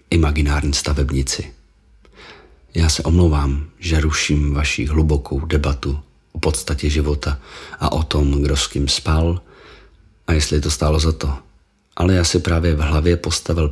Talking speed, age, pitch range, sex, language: 145 wpm, 40-59, 75-90 Hz, male, Czech